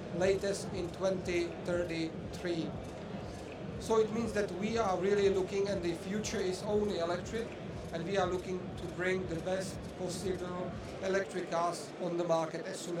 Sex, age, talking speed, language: male, 40-59, 150 wpm, English